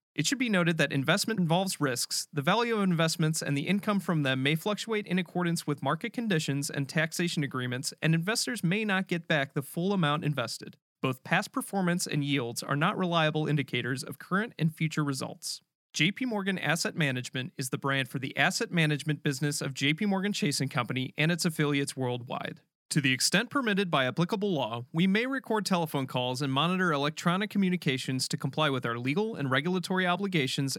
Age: 30-49